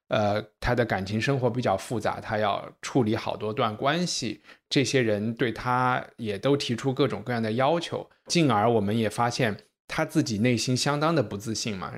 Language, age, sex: Chinese, 20-39, male